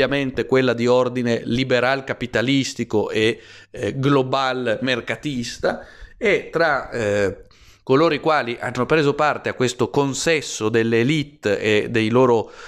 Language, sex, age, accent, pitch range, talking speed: Italian, male, 30-49, native, 110-140 Hz, 120 wpm